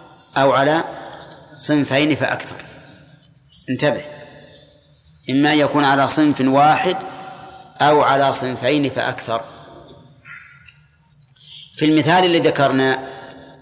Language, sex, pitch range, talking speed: Arabic, male, 135-155 Hz, 80 wpm